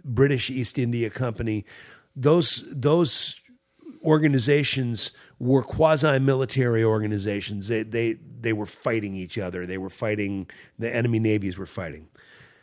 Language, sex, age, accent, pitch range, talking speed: English, male, 50-69, American, 115-150 Hz, 120 wpm